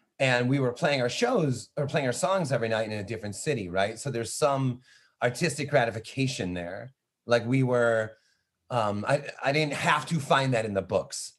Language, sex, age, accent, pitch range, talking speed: English, male, 30-49, American, 115-145 Hz, 195 wpm